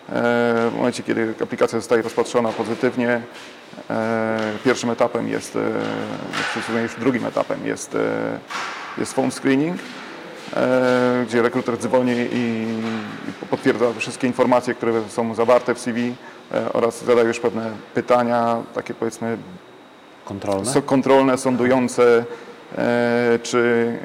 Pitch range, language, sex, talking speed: 115-125 Hz, English, male, 100 wpm